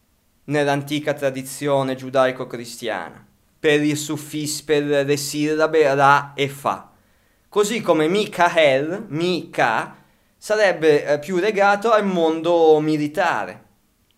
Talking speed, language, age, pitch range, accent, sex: 90 wpm, Italian, 20-39, 130-165 Hz, native, male